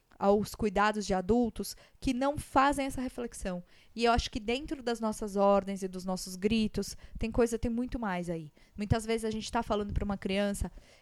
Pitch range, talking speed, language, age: 195-240 Hz, 195 wpm, Portuguese, 20-39